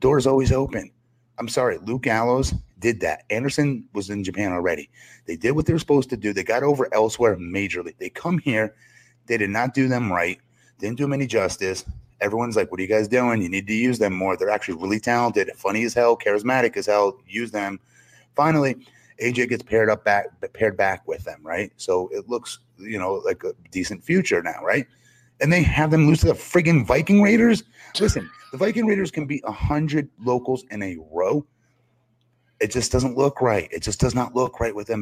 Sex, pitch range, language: male, 110-145 Hz, English